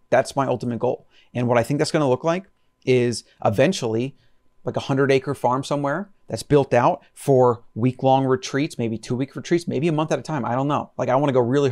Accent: American